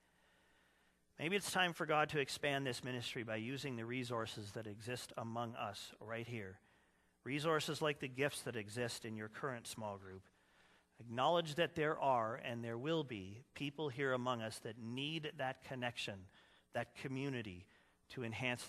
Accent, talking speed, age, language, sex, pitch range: American, 160 wpm, 40-59, English, male, 105-140 Hz